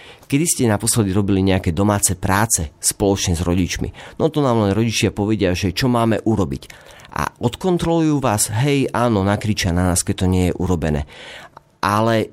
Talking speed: 165 wpm